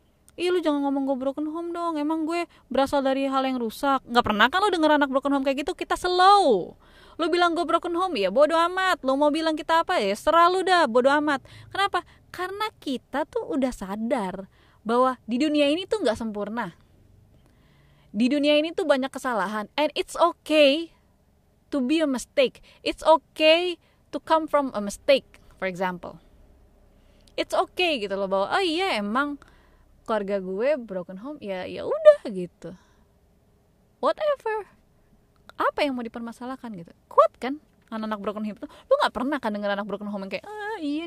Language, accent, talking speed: Indonesian, native, 170 wpm